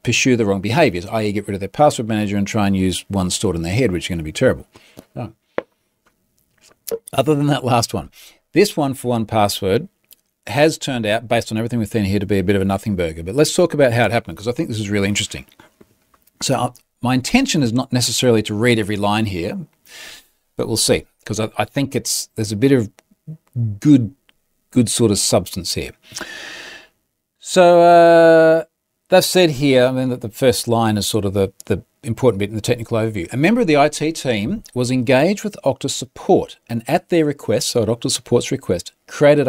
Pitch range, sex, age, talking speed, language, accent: 105-145 Hz, male, 40-59, 215 wpm, English, Australian